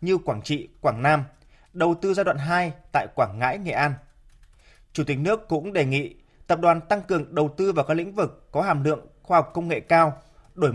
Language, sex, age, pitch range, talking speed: Vietnamese, male, 20-39, 145-180 Hz, 225 wpm